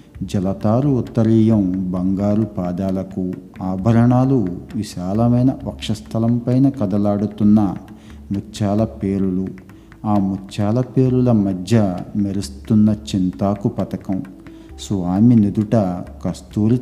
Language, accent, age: Telugu, native, 50-69